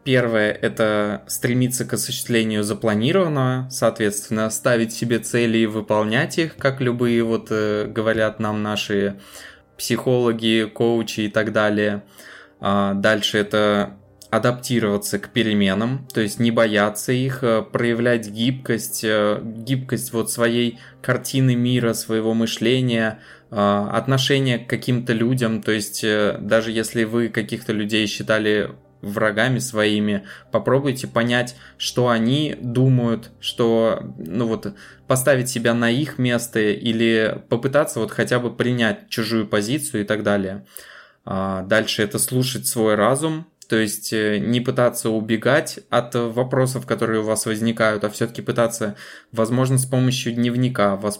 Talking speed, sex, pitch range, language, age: 120 wpm, male, 105-125 Hz, Russian, 20-39